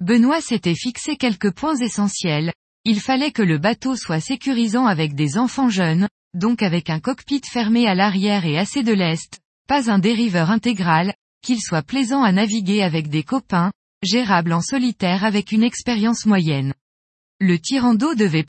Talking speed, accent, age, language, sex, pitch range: 165 wpm, French, 20-39, French, female, 180-245 Hz